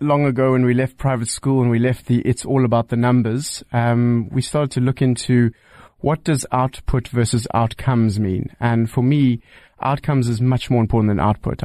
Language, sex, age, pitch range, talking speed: English, male, 30-49, 115-135 Hz, 195 wpm